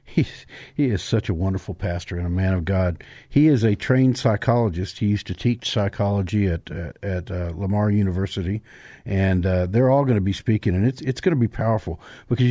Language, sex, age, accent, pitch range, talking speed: English, male, 50-69, American, 95-120 Hz, 210 wpm